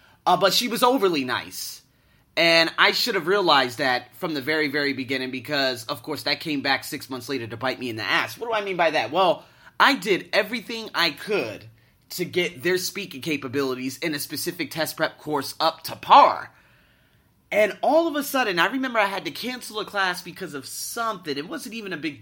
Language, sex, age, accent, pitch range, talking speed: English, male, 30-49, American, 140-215 Hz, 215 wpm